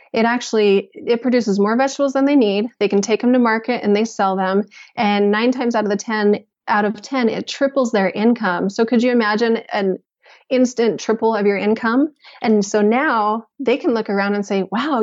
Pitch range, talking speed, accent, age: 200-240 Hz, 210 wpm, American, 20-39